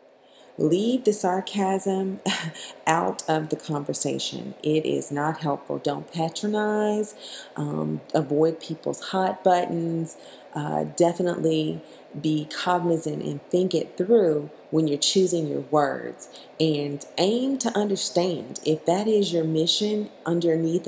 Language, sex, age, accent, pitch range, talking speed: English, female, 40-59, American, 155-190 Hz, 120 wpm